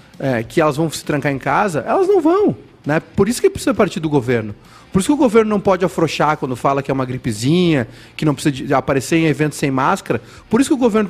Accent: Brazilian